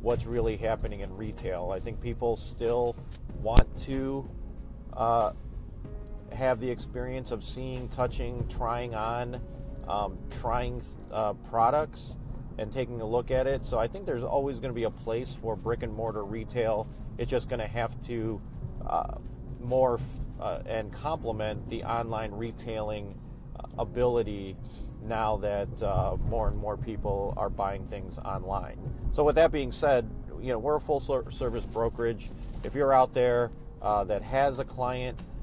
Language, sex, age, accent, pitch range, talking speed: English, male, 40-59, American, 105-125 Hz, 155 wpm